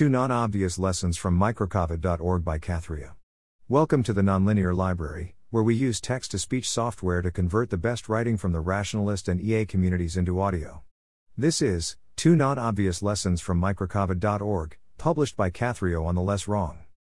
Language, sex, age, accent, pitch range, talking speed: English, male, 50-69, American, 90-115 Hz, 155 wpm